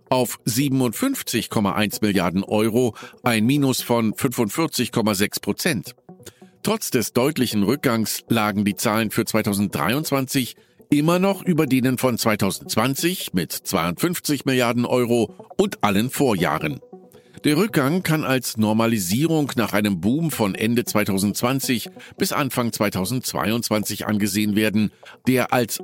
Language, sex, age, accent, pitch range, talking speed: German, male, 50-69, German, 110-155 Hz, 115 wpm